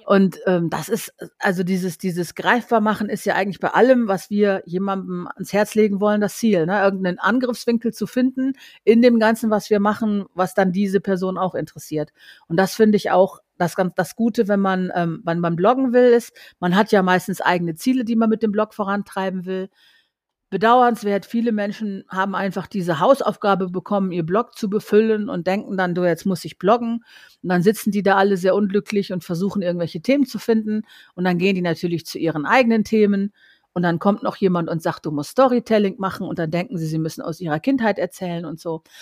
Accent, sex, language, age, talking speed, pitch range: German, female, German, 50-69, 205 wpm, 190-240 Hz